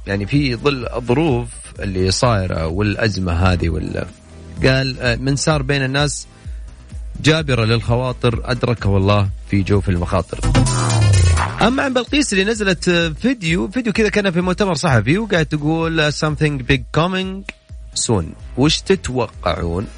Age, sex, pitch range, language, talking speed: 30-49, male, 95-150 Hz, Arabic, 125 wpm